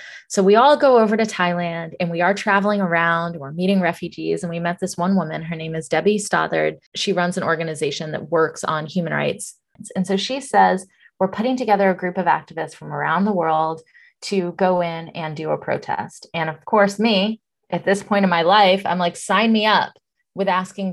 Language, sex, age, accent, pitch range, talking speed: English, female, 20-39, American, 160-195 Hz, 210 wpm